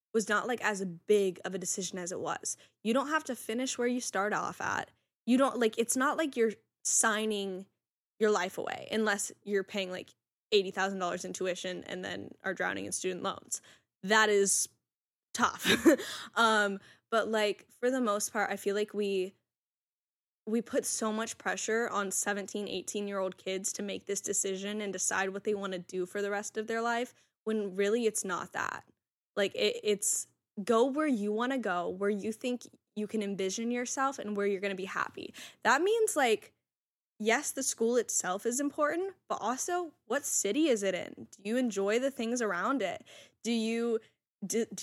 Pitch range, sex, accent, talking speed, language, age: 200-240 Hz, female, American, 185 wpm, English, 10-29